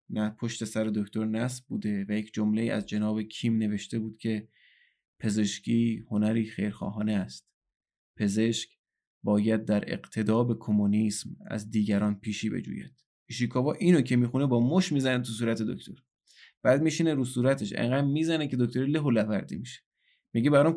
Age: 20-39